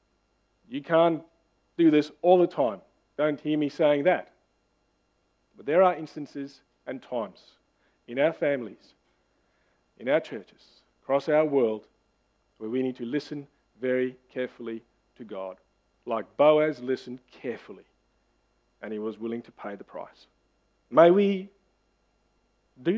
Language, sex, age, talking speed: English, male, 40-59, 135 wpm